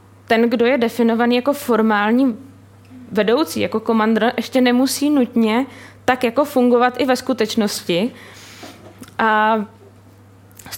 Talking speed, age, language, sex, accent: 110 wpm, 20-39, Czech, female, native